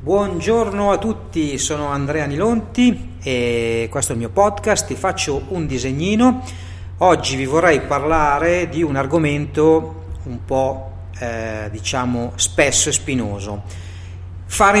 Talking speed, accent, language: 125 wpm, native, Italian